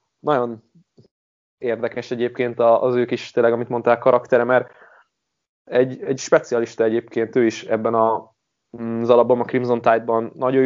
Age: 20-39